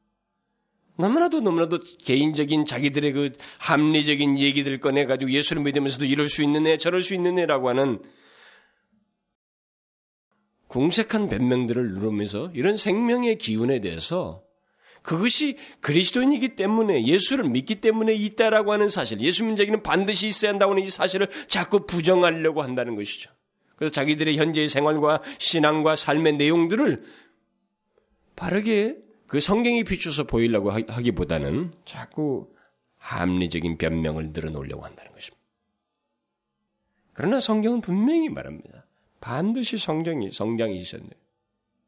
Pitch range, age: 135-215 Hz, 30-49